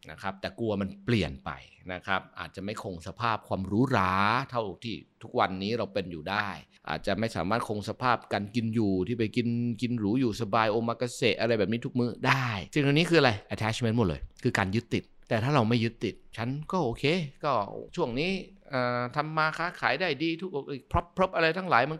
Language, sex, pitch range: Thai, male, 100-140 Hz